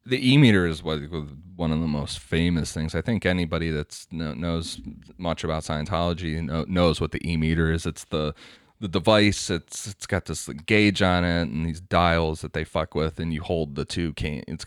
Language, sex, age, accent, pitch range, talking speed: English, male, 30-49, American, 80-100 Hz, 210 wpm